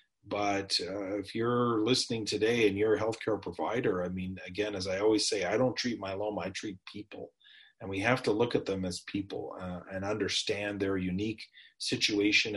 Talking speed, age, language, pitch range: 195 wpm, 40-59, English, 95-105 Hz